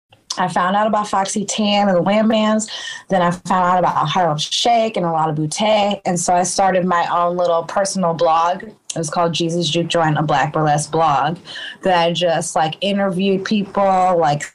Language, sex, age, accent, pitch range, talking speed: English, female, 20-39, American, 170-220 Hz, 195 wpm